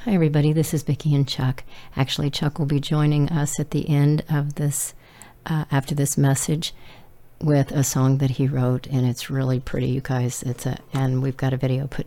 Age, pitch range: 40-59, 135-150 Hz